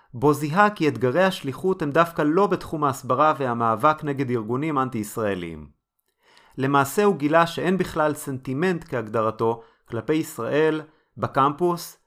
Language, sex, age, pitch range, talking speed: Hebrew, male, 30-49, 125-165 Hz, 120 wpm